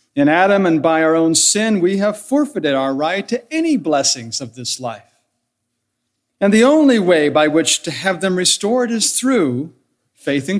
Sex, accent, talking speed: male, American, 180 wpm